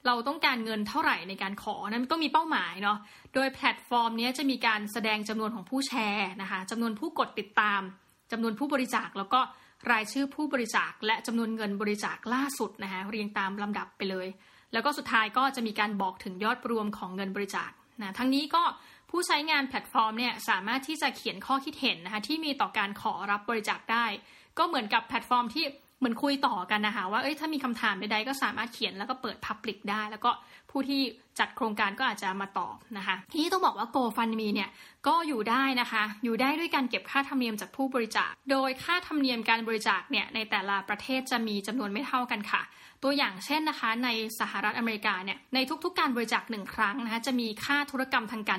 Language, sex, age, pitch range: Thai, female, 20-39, 210-270 Hz